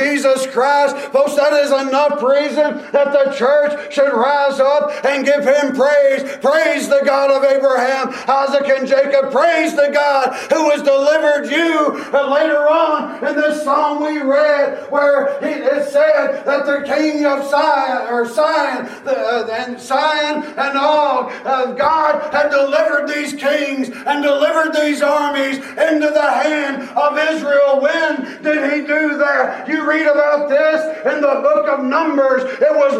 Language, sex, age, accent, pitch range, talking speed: English, male, 40-59, American, 280-310 Hz, 155 wpm